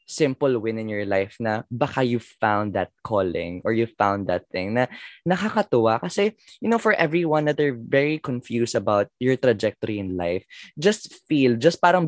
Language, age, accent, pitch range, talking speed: Filipino, 20-39, native, 120-175 Hz, 180 wpm